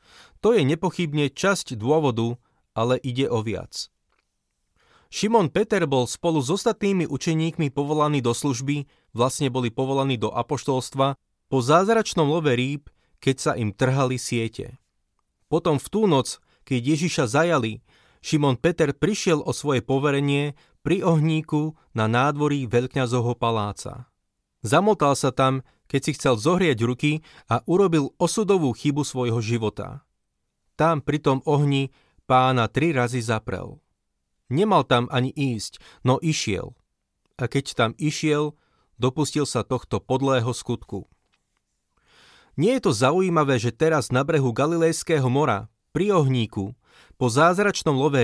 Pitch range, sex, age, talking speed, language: 125-155 Hz, male, 20-39, 130 wpm, Slovak